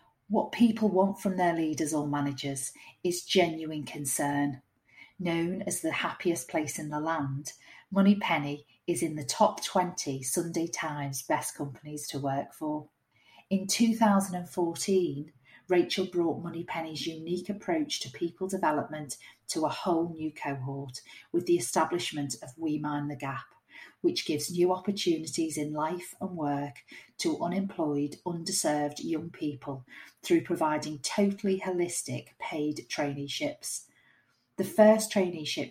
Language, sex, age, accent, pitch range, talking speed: English, female, 40-59, British, 150-185 Hz, 130 wpm